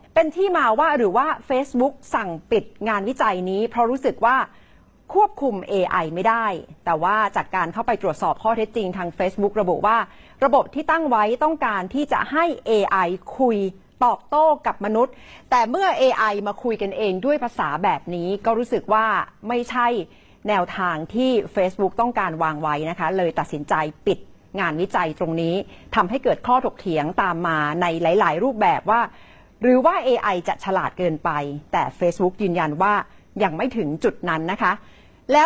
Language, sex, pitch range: Thai, female, 180-245 Hz